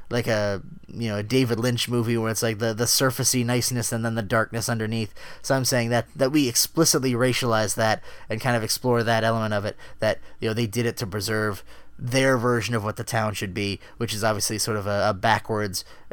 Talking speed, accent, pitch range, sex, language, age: 225 wpm, American, 120-160 Hz, male, English, 20-39